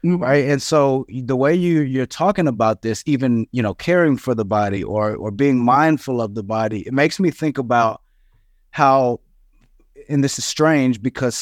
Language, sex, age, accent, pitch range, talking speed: English, male, 30-49, American, 120-150 Hz, 185 wpm